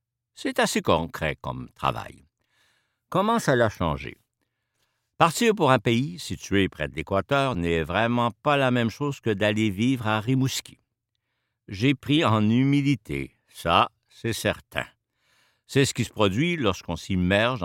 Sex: male